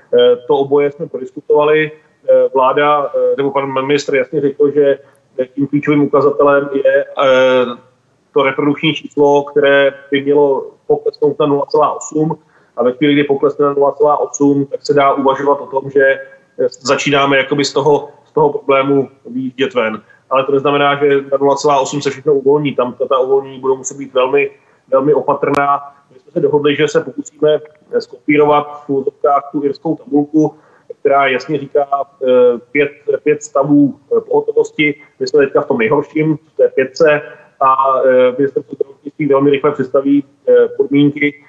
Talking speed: 140 wpm